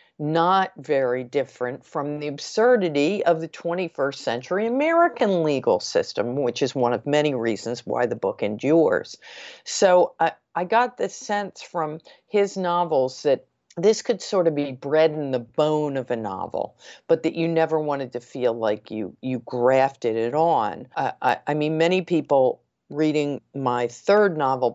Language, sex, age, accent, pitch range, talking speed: English, female, 50-69, American, 130-165 Hz, 165 wpm